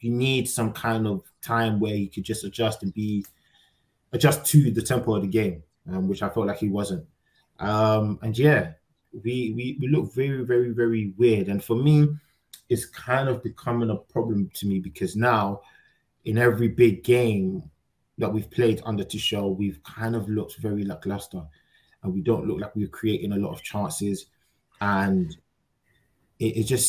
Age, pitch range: 20-39, 105-125 Hz